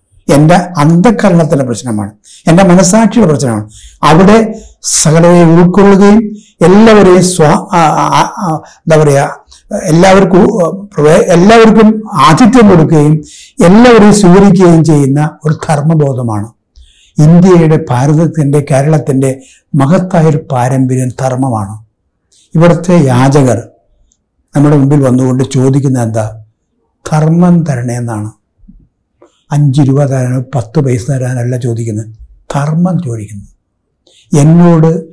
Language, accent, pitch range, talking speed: Malayalam, native, 125-170 Hz, 80 wpm